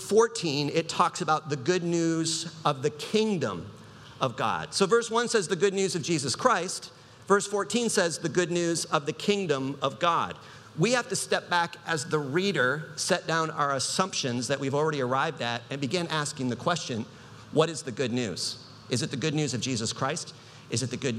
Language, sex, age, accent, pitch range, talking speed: English, male, 50-69, American, 135-180 Hz, 205 wpm